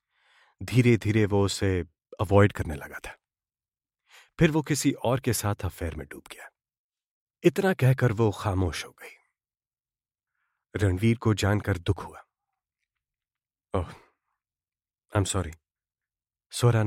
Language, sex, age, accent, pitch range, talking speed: Hindi, male, 30-49, native, 100-135 Hz, 115 wpm